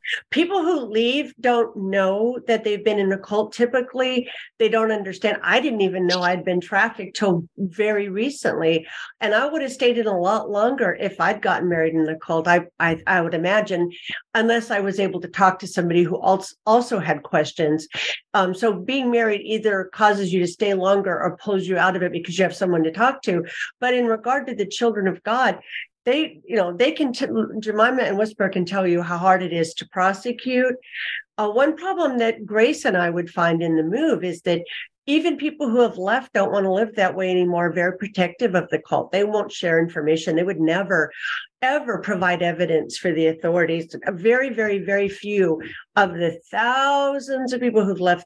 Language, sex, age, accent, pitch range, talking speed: English, female, 50-69, American, 175-235 Hz, 200 wpm